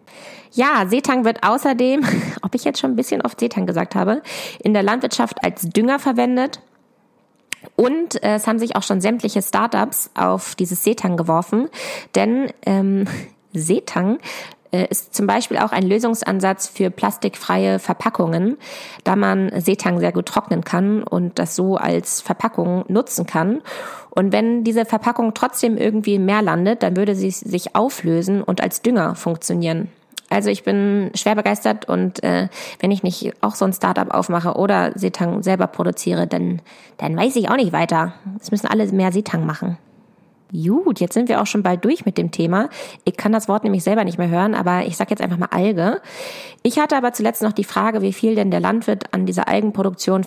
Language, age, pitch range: German, 20-39, 180-225 Hz